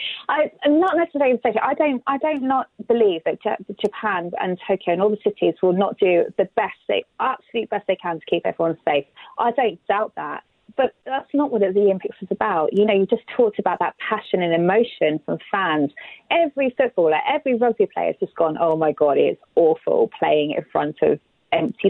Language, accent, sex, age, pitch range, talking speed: English, British, female, 30-49, 180-245 Hz, 200 wpm